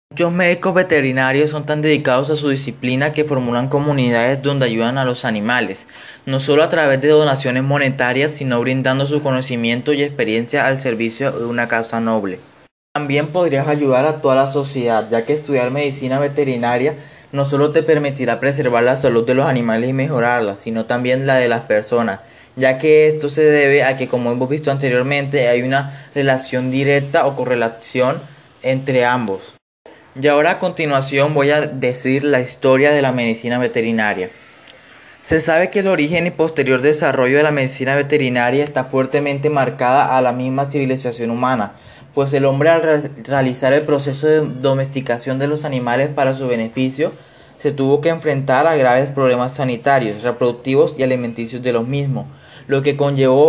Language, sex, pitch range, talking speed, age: Spanish, male, 125-145 Hz, 170 wpm, 20-39